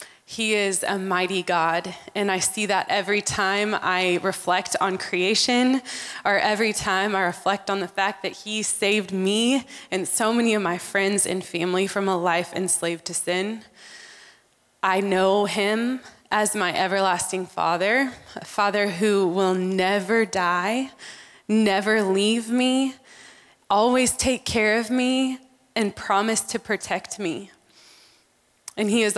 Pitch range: 185-220 Hz